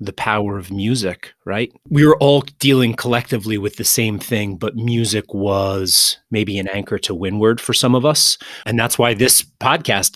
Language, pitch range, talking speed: English, 100-120 Hz, 185 wpm